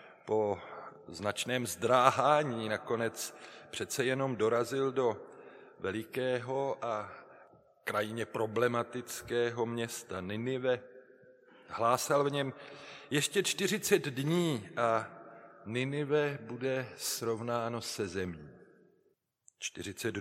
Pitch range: 110-135 Hz